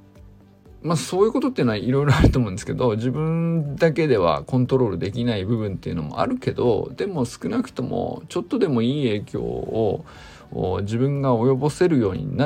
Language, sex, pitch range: Japanese, male, 110-140 Hz